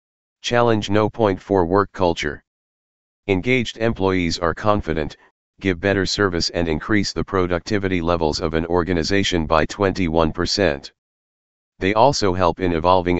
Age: 40-59